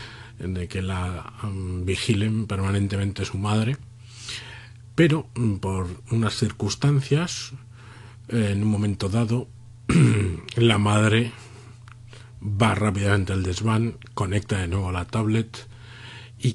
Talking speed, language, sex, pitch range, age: 110 wpm, Spanish, male, 95-115 Hz, 40-59